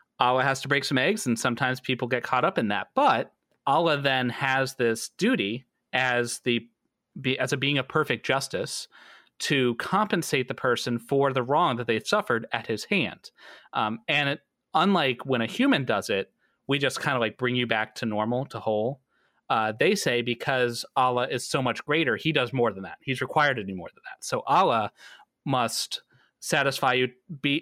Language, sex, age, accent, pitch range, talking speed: English, male, 30-49, American, 120-145 Hz, 195 wpm